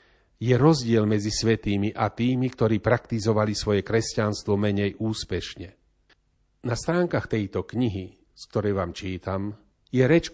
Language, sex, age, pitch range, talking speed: Slovak, male, 40-59, 105-135 Hz, 130 wpm